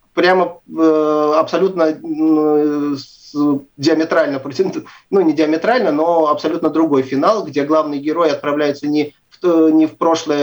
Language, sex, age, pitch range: Russian, male, 30-49, 130-160 Hz